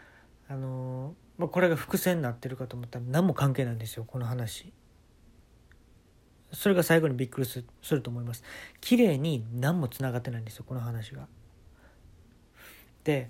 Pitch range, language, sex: 115-145 Hz, Japanese, male